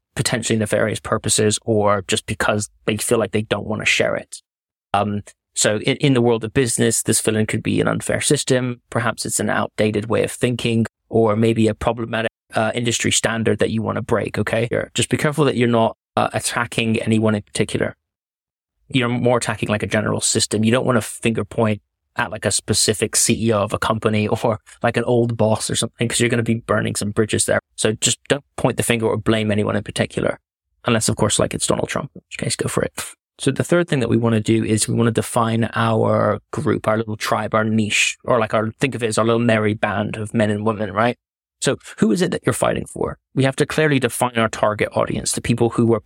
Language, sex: English, male